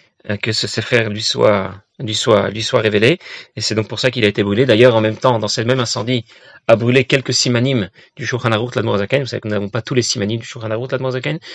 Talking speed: 240 wpm